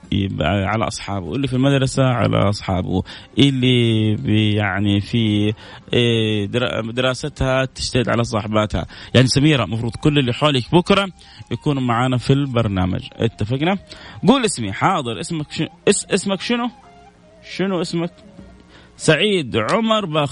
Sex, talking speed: male, 105 wpm